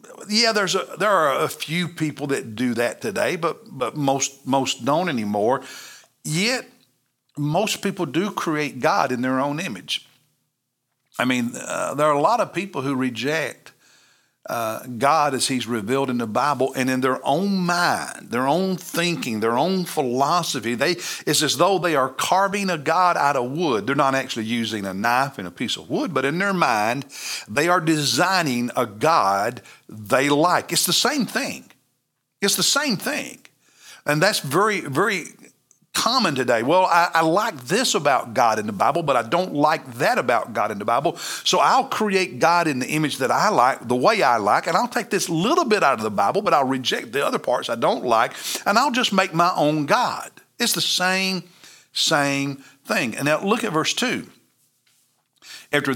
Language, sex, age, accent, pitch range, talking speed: English, male, 60-79, American, 130-185 Hz, 190 wpm